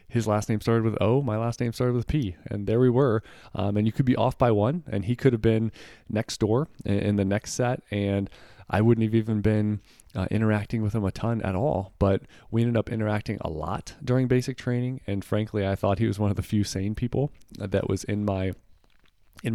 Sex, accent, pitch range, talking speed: male, American, 100-115 Hz, 235 wpm